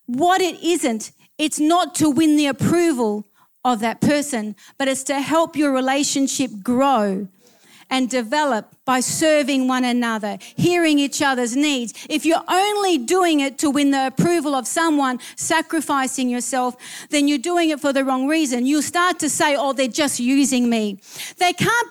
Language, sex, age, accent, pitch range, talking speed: English, female, 40-59, Australian, 245-305 Hz, 165 wpm